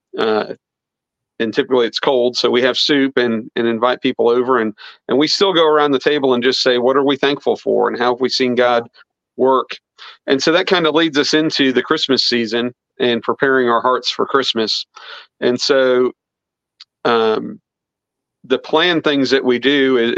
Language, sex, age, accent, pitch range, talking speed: English, male, 40-59, American, 120-135 Hz, 190 wpm